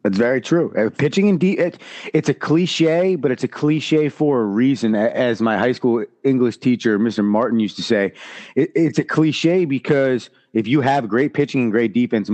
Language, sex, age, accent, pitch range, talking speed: English, male, 30-49, American, 120-160 Hz, 190 wpm